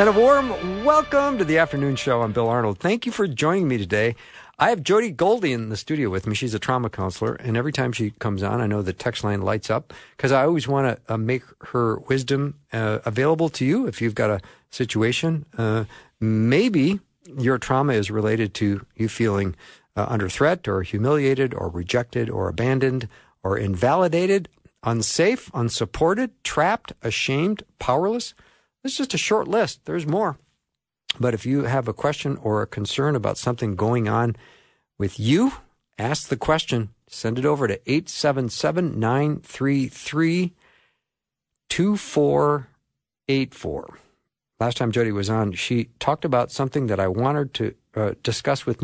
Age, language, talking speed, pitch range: 50-69, English, 160 wpm, 110-145 Hz